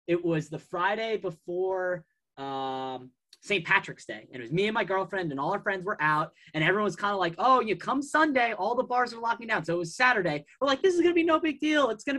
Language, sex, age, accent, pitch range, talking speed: English, male, 20-39, American, 165-215 Hz, 265 wpm